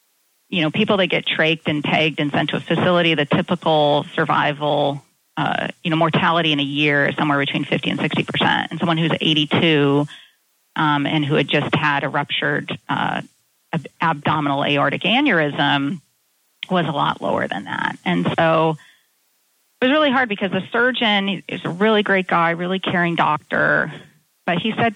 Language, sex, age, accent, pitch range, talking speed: English, female, 40-59, American, 160-215 Hz, 170 wpm